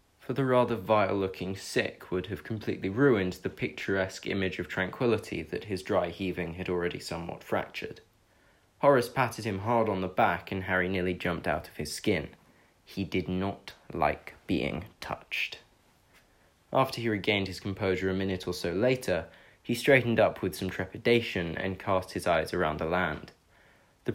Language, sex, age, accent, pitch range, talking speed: English, male, 20-39, British, 90-110 Hz, 165 wpm